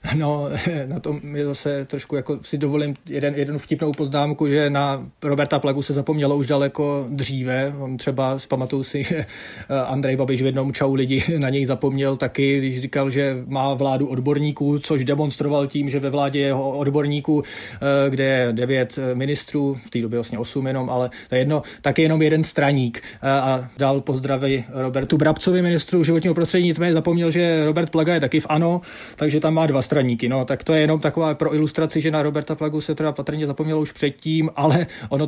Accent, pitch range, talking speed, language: native, 140-155 Hz, 185 wpm, Czech